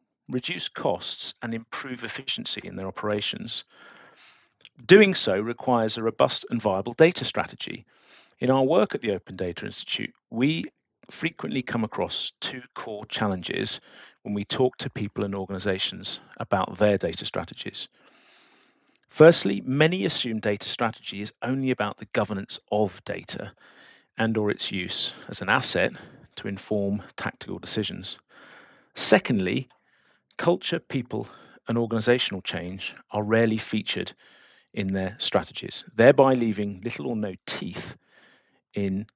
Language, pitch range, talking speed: English, 105-135 Hz, 130 wpm